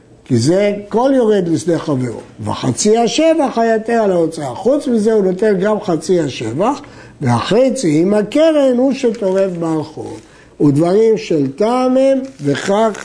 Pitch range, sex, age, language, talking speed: 155-225 Hz, male, 60-79, Hebrew, 130 wpm